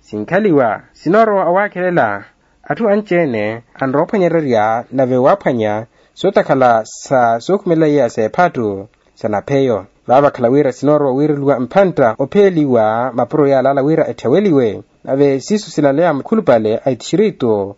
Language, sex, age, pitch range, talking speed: Portuguese, male, 30-49, 125-175 Hz, 110 wpm